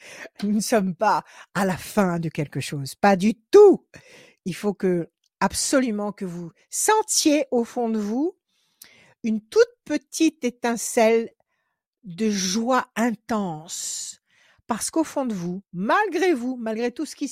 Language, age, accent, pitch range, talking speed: French, 60-79, French, 185-240 Hz, 140 wpm